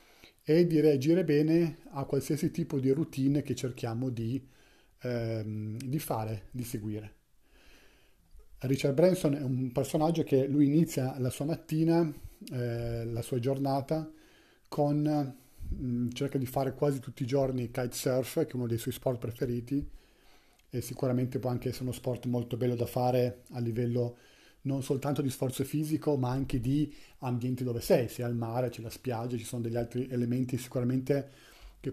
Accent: native